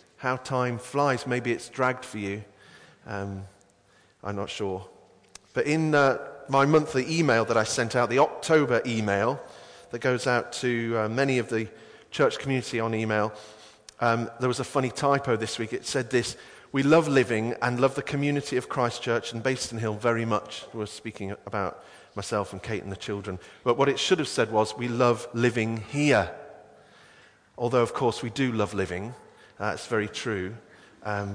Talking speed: 180 wpm